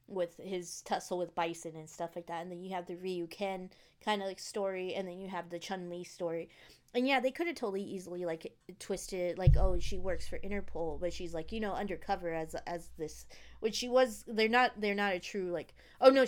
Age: 20-39